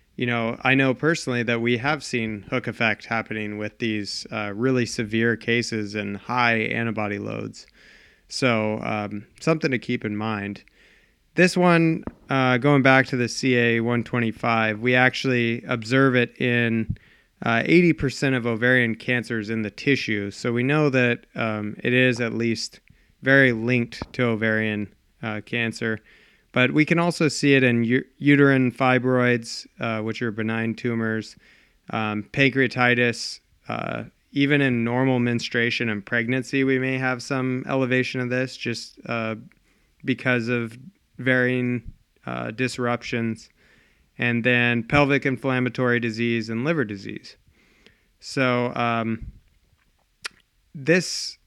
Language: English